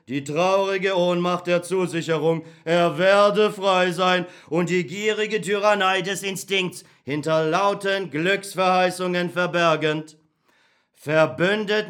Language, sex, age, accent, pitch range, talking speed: German, male, 40-59, German, 175-200 Hz, 100 wpm